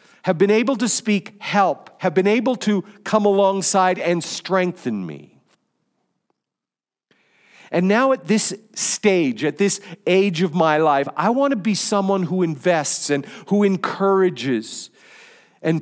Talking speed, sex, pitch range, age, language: 140 wpm, male, 165-205 Hz, 50-69, English